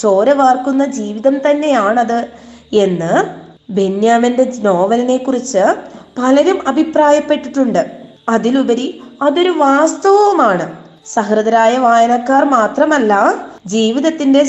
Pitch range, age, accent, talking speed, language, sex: 205-285 Hz, 20-39, native, 70 wpm, Malayalam, female